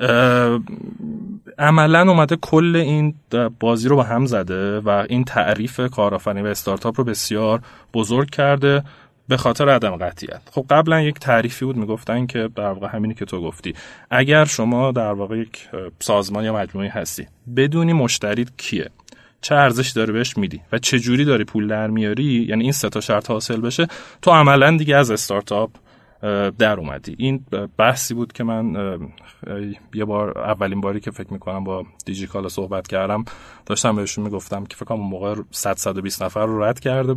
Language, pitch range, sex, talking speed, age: Persian, 100-130 Hz, male, 165 wpm, 30-49